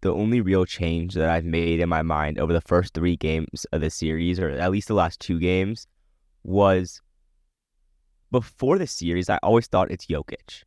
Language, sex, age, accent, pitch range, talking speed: English, male, 20-39, American, 80-115 Hz, 190 wpm